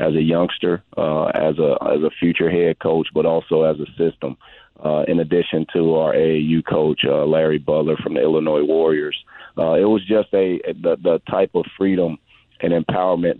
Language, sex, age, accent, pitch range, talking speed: English, male, 40-59, American, 80-90 Hz, 190 wpm